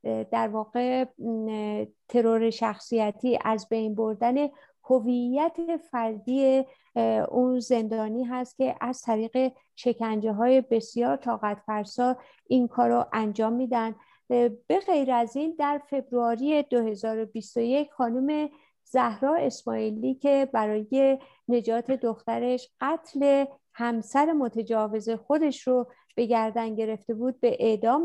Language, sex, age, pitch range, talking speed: Persian, female, 50-69, 225-280 Hz, 105 wpm